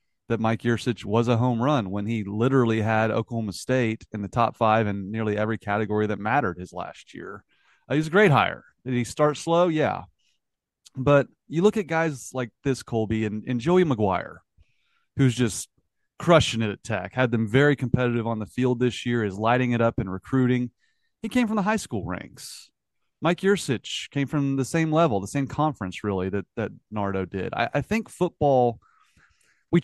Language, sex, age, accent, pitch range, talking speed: English, male, 30-49, American, 110-150 Hz, 195 wpm